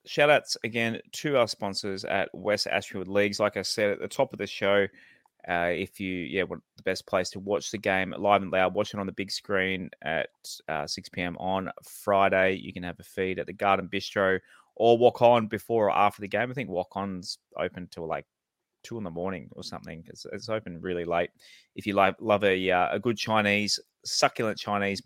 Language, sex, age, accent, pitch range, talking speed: English, male, 20-39, Australian, 90-105 Hz, 220 wpm